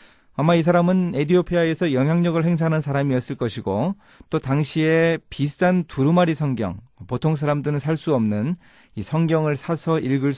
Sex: male